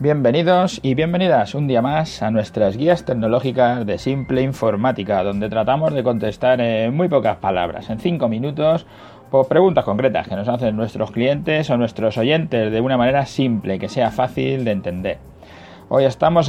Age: 30-49